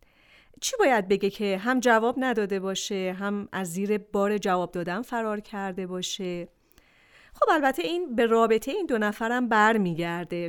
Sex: female